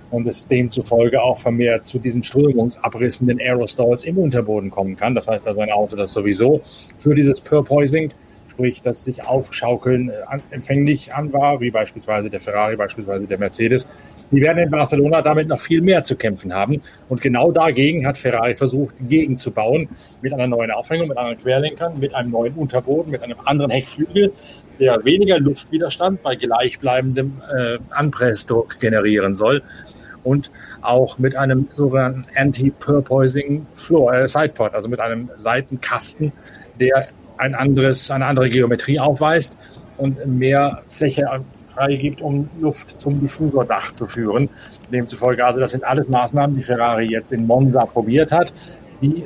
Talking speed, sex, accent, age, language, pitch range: 150 wpm, male, German, 30-49, German, 120-145 Hz